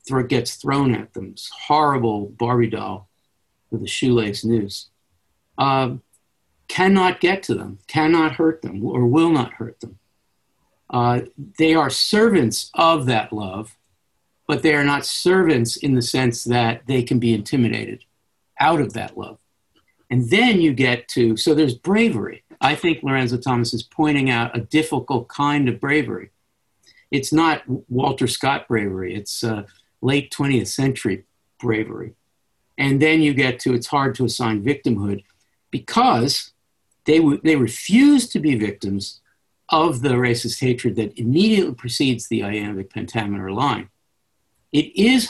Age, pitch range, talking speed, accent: 50-69, 115-150 Hz, 145 wpm, American